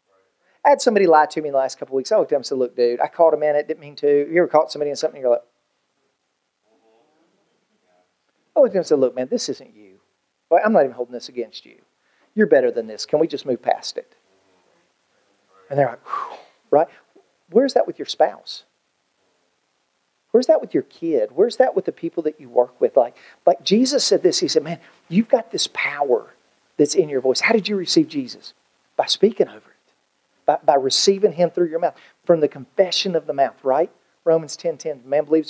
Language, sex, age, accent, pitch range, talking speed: English, male, 40-59, American, 150-195 Hz, 225 wpm